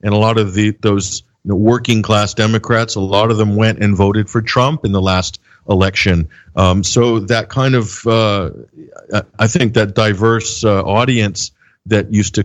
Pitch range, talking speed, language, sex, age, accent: 100-120 Hz, 190 wpm, English, male, 50-69, American